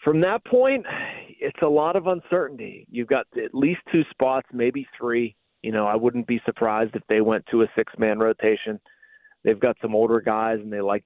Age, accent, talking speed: 40-59, American, 205 wpm